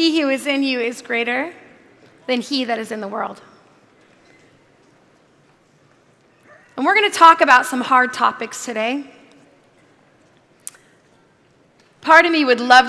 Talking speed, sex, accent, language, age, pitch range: 135 wpm, female, American, English, 30-49, 245-320 Hz